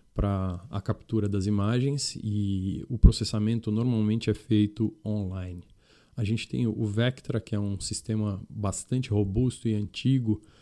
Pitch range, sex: 100-115 Hz, male